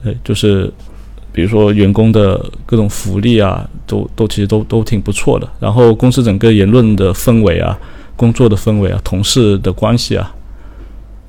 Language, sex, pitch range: Chinese, male, 100-115 Hz